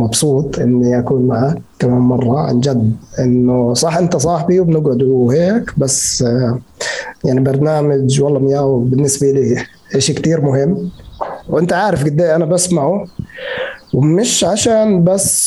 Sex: male